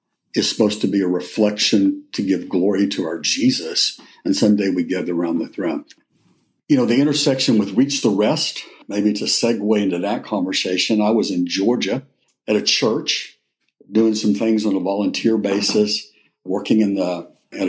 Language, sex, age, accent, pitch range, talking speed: English, male, 60-79, American, 95-115 Hz, 175 wpm